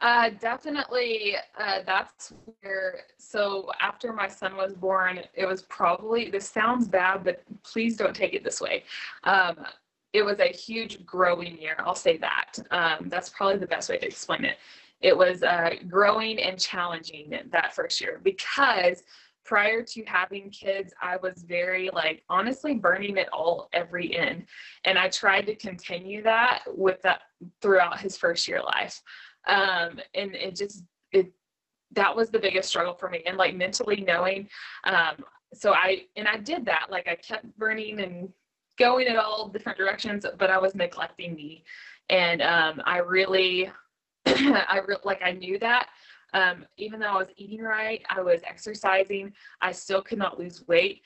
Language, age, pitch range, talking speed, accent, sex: English, 20-39, 180-225 Hz, 170 wpm, American, female